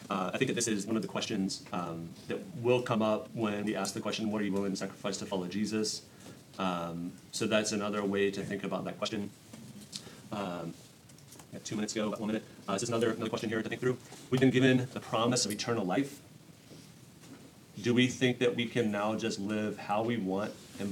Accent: American